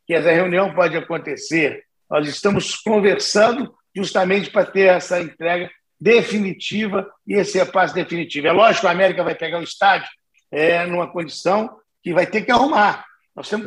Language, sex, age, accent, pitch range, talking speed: Portuguese, male, 50-69, Brazilian, 175-210 Hz, 165 wpm